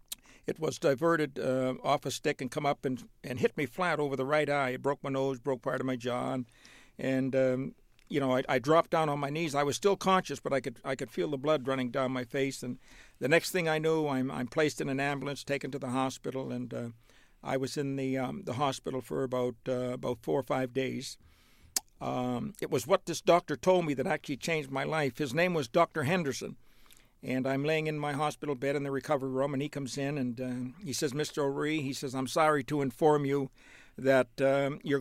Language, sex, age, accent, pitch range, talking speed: English, male, 60-79, American, 130-150 Hz, 235 wpm